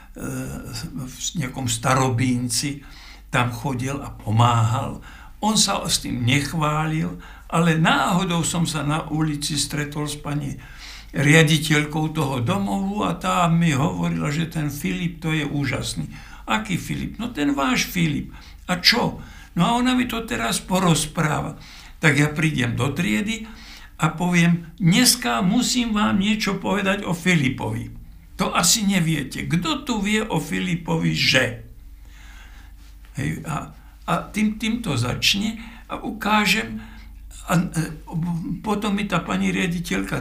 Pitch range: 130-190 Hz